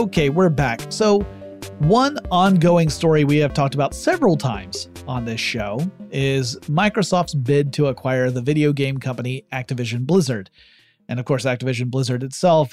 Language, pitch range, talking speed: English, 130-165 Hz, 155 wpm